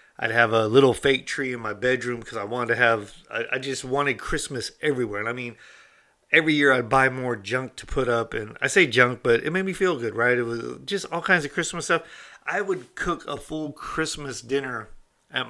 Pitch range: 120-155 Hz